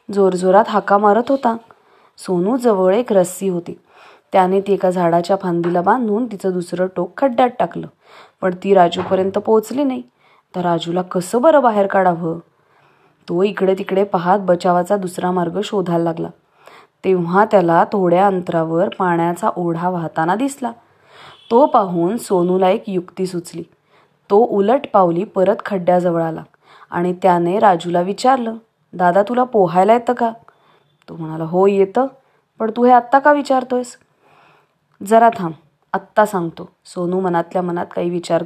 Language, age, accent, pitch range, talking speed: English, 20-39, Indian, 175-220 Hz, 110 wpm